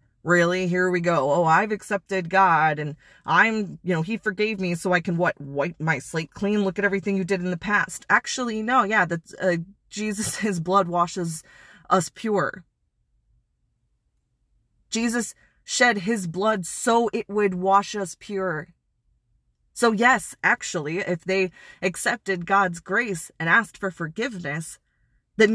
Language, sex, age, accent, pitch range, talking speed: English, female, 20-39, American, 165-215 Hz, 155 wpm